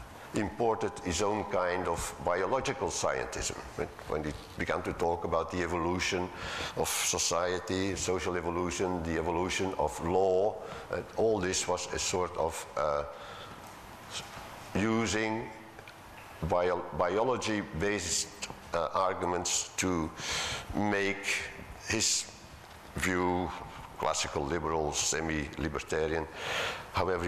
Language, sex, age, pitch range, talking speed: English, male, 60-79, 80-100 Hz, 90 wpm